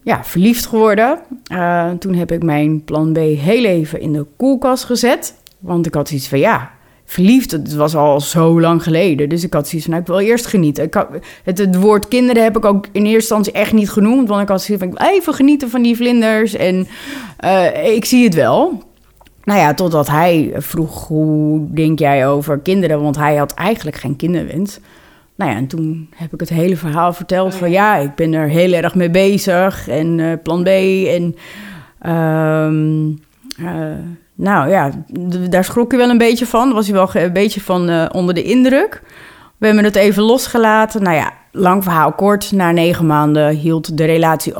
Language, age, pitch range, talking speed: Dutch, 30-49, 160-205 Hz, 200 wpm